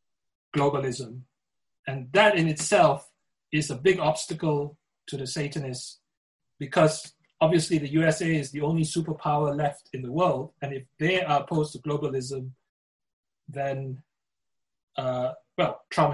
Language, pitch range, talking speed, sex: English, 140-170 Hz, 130 wpm, male